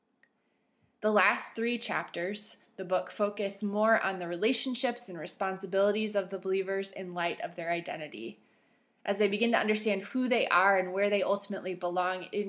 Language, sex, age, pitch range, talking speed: English, female, 20-39, 185-230 Hz, 170 wpm